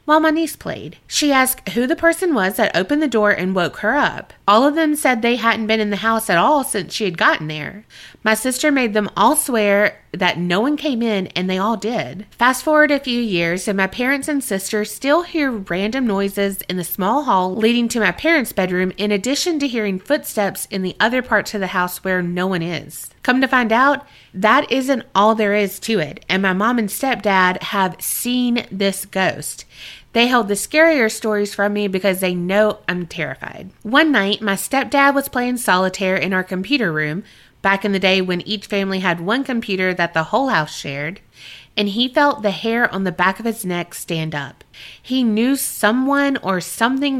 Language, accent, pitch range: English, American, 190-250 Hz